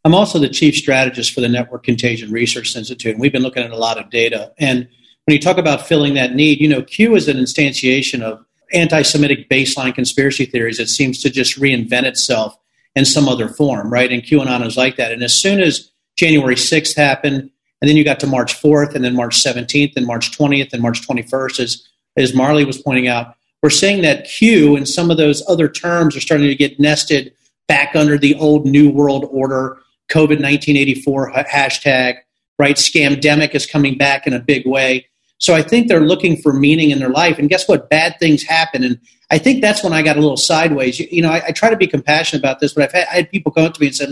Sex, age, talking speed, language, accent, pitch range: male, 40-59, 225 wpm, English, American, 130-150 Hz